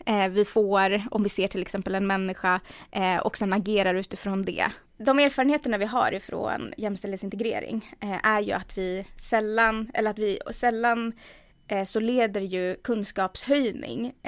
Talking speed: 135 wpm